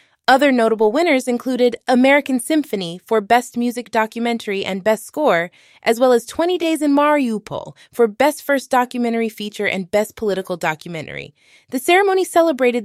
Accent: American